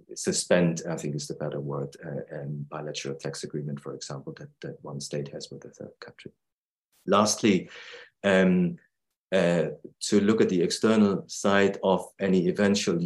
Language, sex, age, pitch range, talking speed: English, male, 30-49, 80-100 Hz, 160 wpm